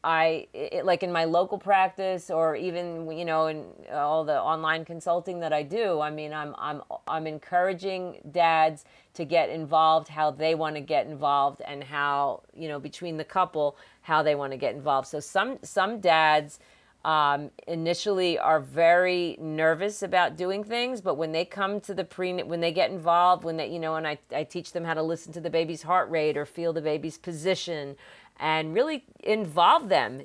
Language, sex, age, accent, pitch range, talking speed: English, female, 40-59, American, 155-180 Hz, 190 wpm